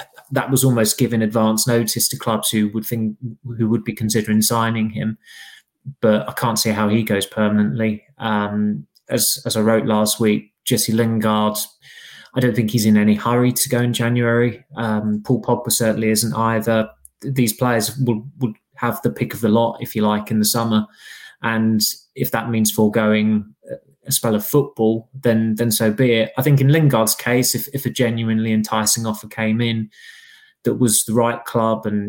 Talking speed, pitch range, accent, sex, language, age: 185 wpm, 110-120 Hz, British, male, English, 20-39